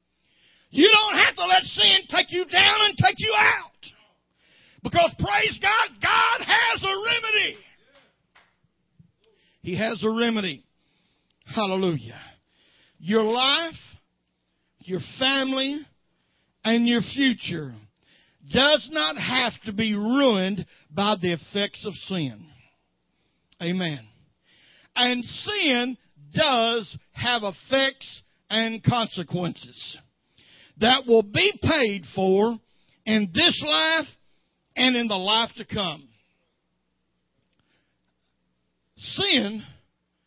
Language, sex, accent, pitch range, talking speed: English, male, American, 180-295 Hz, 100 wpm